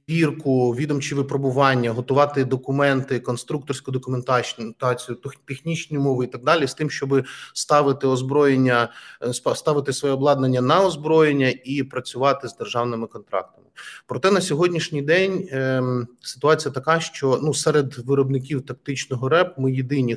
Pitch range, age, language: 125-145 Hz, 30-49, Ukrainian